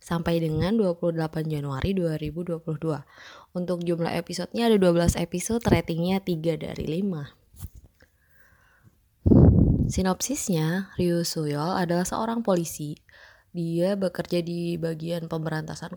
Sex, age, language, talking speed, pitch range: female, 20-39, Indonesian, 100 wpm, 155-185 Hz